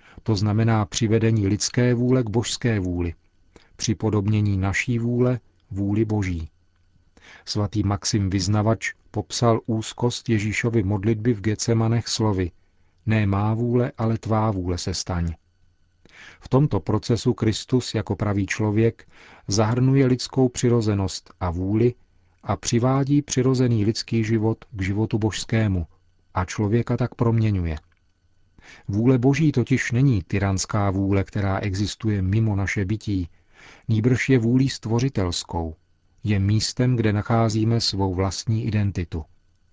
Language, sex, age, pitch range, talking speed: Czech, male, 40-59, 95-115 Hz, 115 wpm